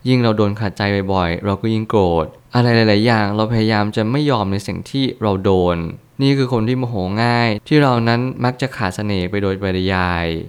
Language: Thai